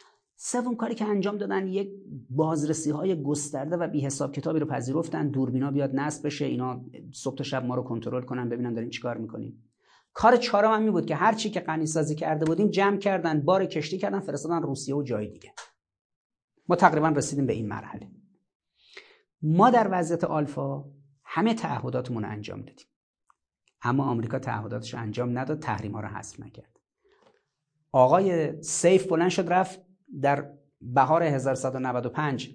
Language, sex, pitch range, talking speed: Persian, male, 130-175 Hz, 155 wpm